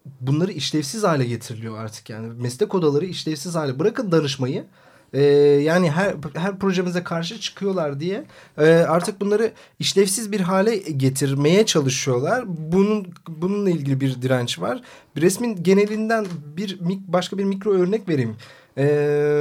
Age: 30-49